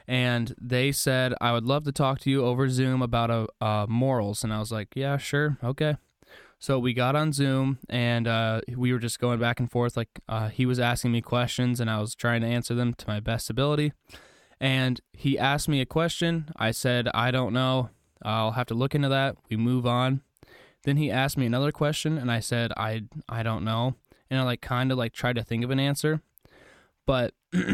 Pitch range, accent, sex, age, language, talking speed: 115-135 Hz, American, male, 10-29, English, 220 wpm